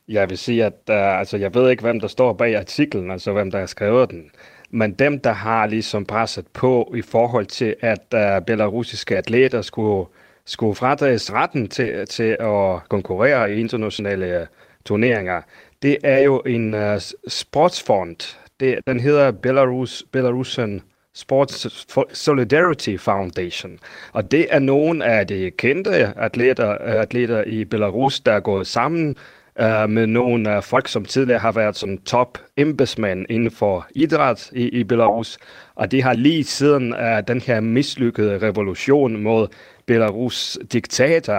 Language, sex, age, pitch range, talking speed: Danish, male, 30-49, 105-125 Hz, 145 wpm